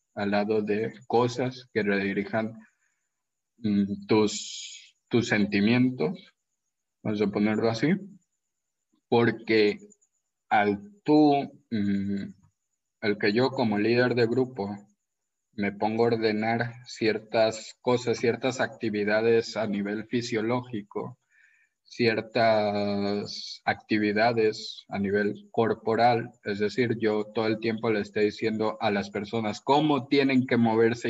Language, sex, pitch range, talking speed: Spanish, male, 105-120 Hz, 105 wpm